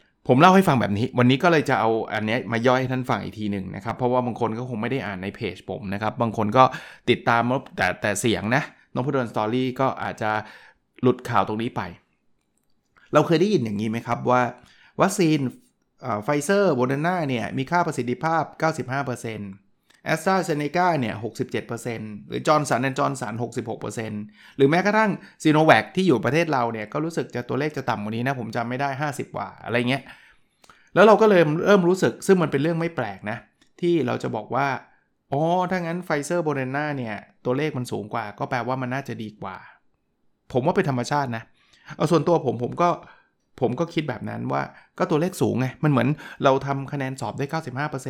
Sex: male